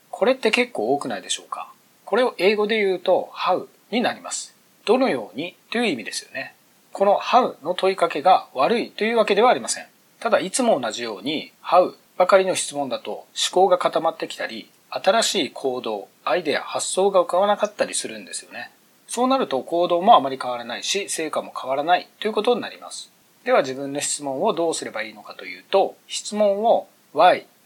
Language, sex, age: Japanese, male, 40-59